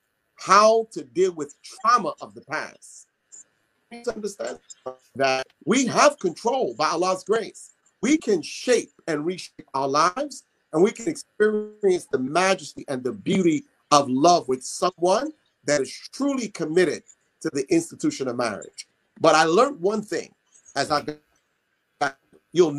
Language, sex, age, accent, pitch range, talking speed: English, male, 40-59, American, 150-230 Hz, 140 wpm